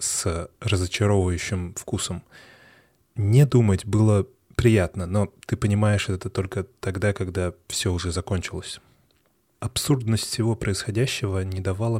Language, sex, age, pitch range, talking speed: Russian, male, 20-39, 95-115 Hz, 110 wpm